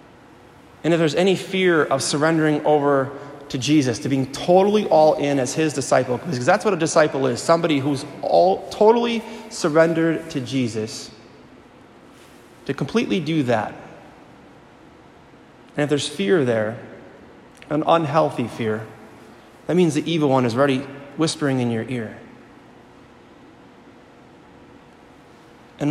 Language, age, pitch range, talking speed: English, 30-49, 135-170 Hz, 125 wpm